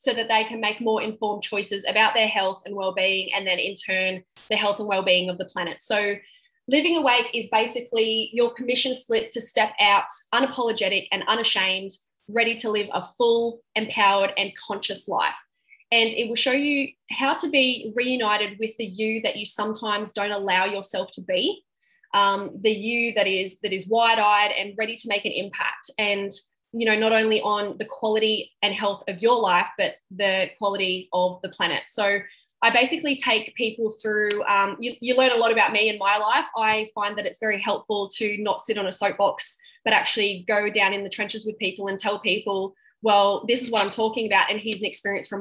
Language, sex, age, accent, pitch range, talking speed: English, female, 20-39, Australian, 200-230 Hz, 200 wpm